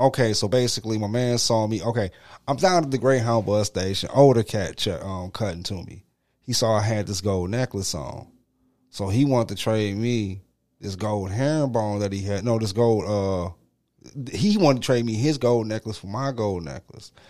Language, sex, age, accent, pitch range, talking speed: English, male, 30-49, American, 105-140 Hz, 200 wpm